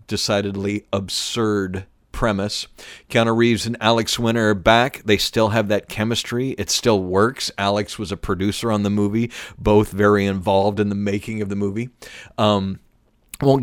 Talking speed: 160 wpm